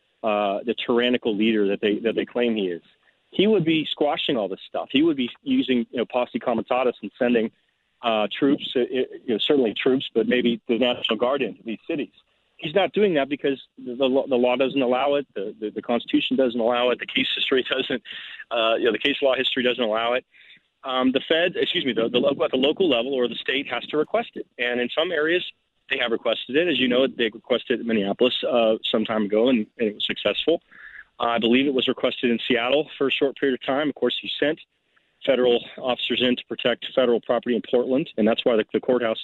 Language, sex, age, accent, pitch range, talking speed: English, male, 40-59, American, 115-140 Hz, 235 wpm